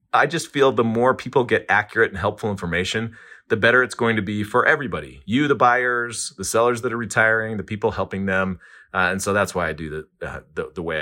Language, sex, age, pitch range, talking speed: English, male, 30-49, 100-125 Hz, 235 wpm